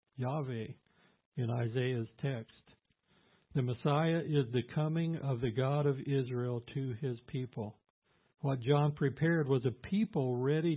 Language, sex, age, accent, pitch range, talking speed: English, male, 60-79, American, 125-145 Hz, 135 wpm